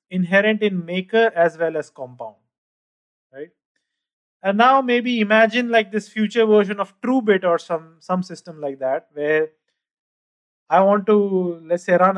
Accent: Indian